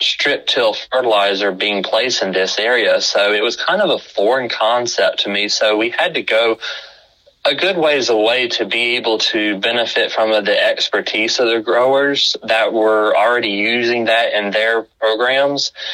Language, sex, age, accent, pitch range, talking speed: English, male, 20-39, American, 100-115 Hz, 175 wpm